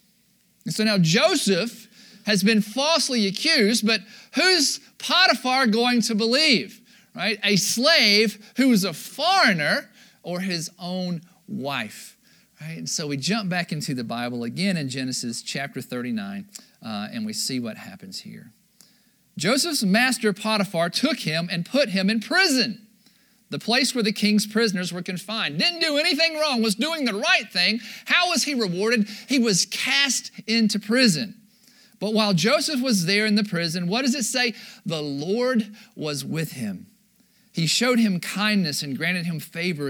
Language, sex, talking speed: English, male, 160 wpm